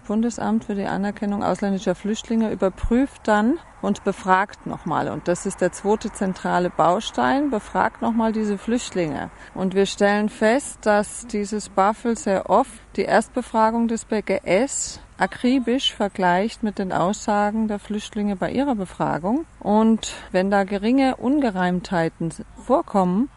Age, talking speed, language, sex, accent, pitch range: 40-59, 130 wpm, German, female, German, 175-220 Hz